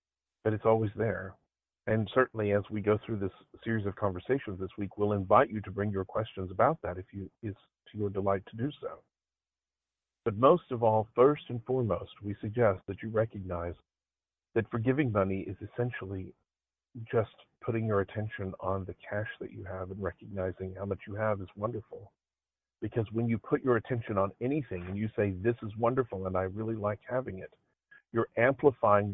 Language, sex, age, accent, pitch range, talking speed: English, male, 50-69, American, 95-115 Hz, 185 wpm